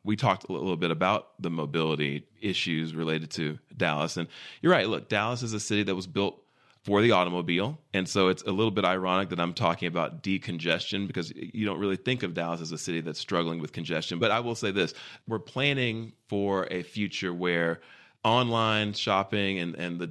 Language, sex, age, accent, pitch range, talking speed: English, male, 30-49, American, 85-105 Hz, 205 wpm